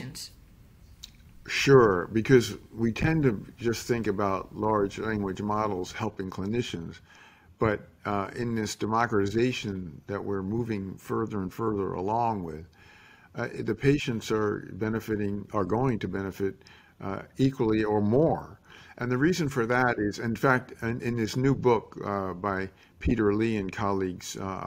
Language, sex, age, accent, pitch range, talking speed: English, male, 50-69, American, 100-120 Hz, 140 wpm